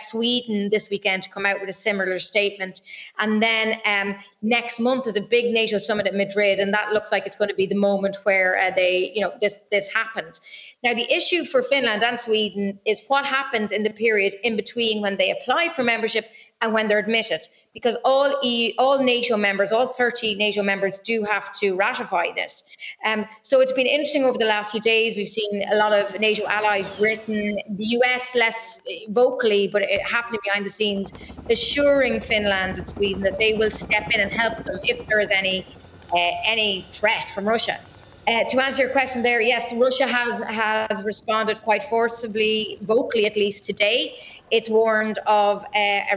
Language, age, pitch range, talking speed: English, 30-49, 200-235 Hz, 195 wpm